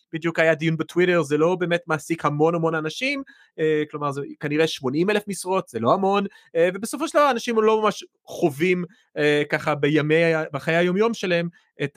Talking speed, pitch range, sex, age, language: 160 wpm, 135-190 Hz, male, 30-49, Hebrew